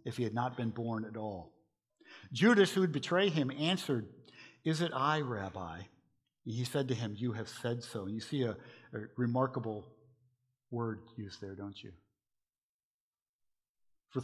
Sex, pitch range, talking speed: male, 120-165 Hz, 155 wpm